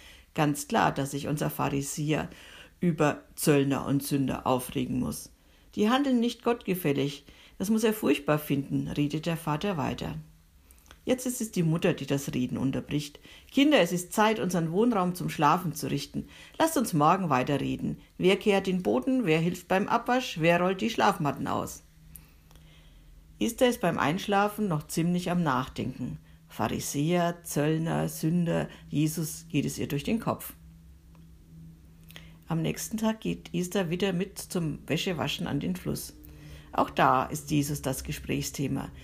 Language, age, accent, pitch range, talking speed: German, 60-79, German, 130-190 Hz, 150 wpm